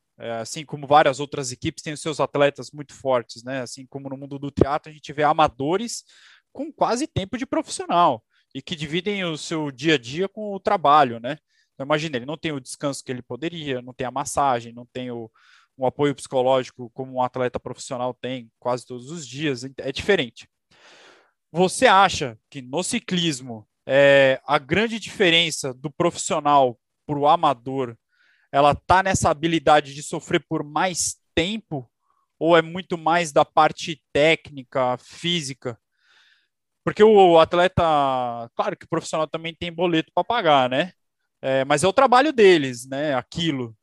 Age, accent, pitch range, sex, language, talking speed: 20-39, Brazilian, 130-170 Hz, male, Portuguese, 165 wpm